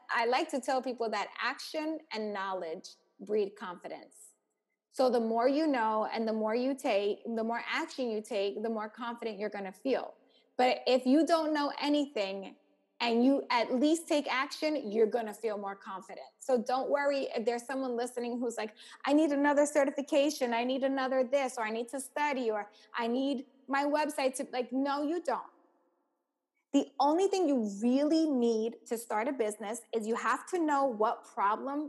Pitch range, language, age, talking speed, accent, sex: 220-275 Hz, English, 20-39, 190 wpm, American, female